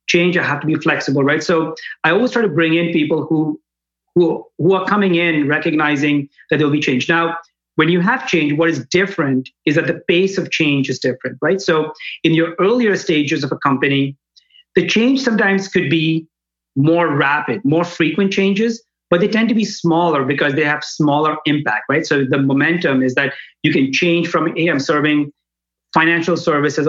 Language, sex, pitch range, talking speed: English, male, 145-180 Hz, 195 wpm